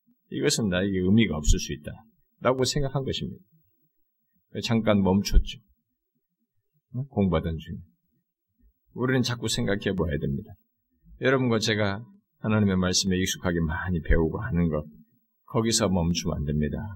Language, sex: Korean, male